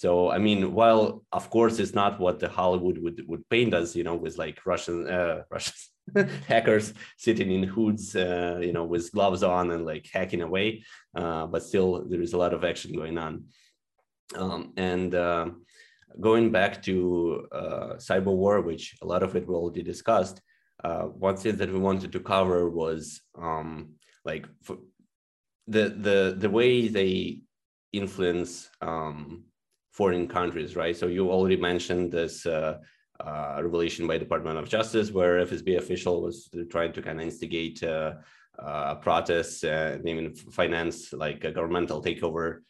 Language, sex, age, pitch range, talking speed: Ukrainian, male, 20-39, 85-95 Hz, 165 wpm